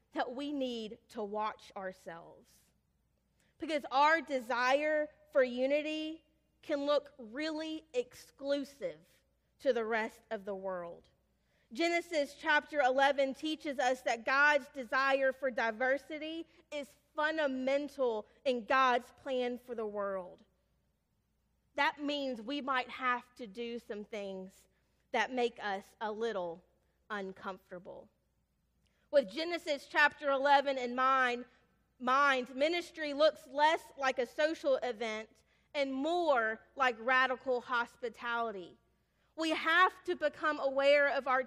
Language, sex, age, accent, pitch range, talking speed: English, female, 30-49, American, 230-290 Hz, 115 wpm